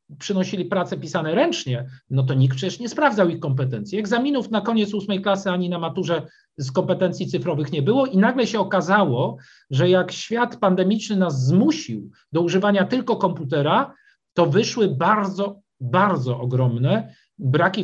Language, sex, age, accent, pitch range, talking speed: Polish, male, 50-69, native, 150-210 Hz, 150 wpm